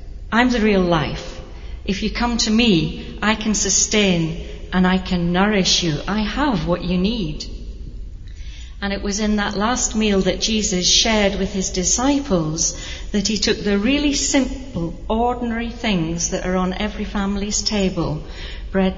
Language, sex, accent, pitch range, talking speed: English, female, British, 180-230 Hz, 160 wpm